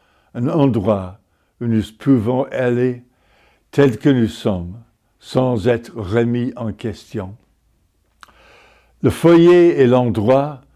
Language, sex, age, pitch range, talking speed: French, male, 60-79, 110-130 Hz, 105 wpm